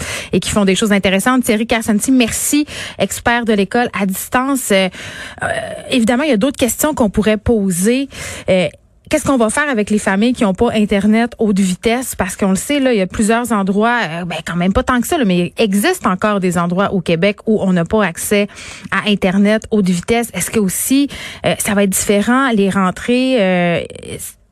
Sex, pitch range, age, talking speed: female, 195-245 Hz, 30-49, 210 wpm